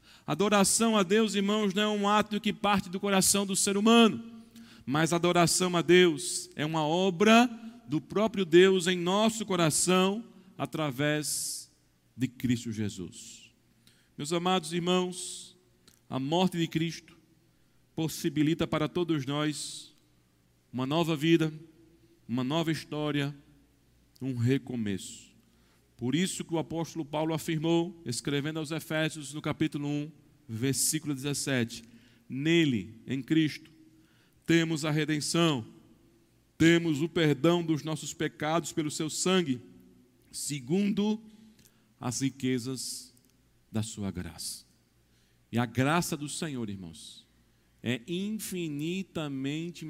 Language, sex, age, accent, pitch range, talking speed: Portuguese, male, 40-59, Brazilian, 130-175 Hz, 115 wpm